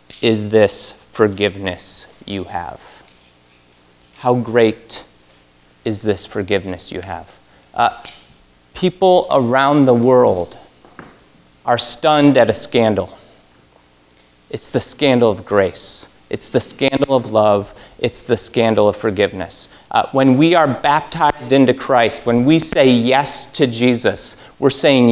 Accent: American